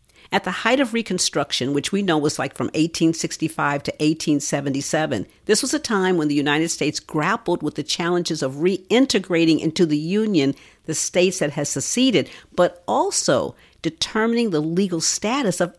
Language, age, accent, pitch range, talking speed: English, 50-69, American, 155-220 Hz, 165 wpm